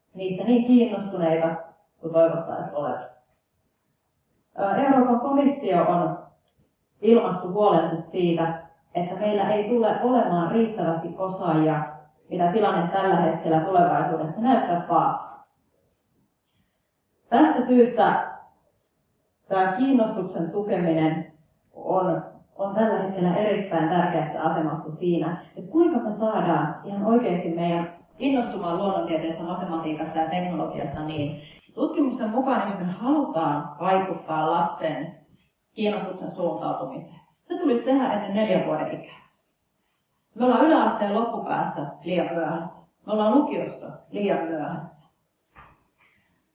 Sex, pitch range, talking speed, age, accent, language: female, 165-230 Hz, 100 wpm, 30-49, native, Finnish